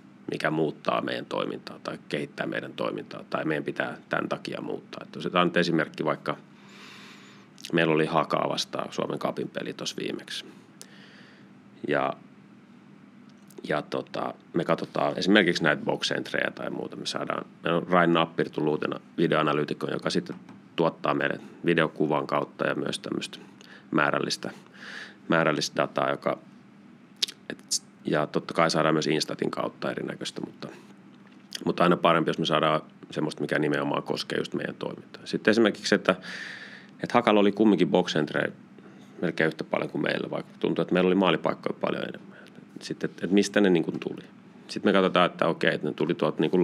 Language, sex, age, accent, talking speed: Finnish, male, 30-49, native, 150 wpm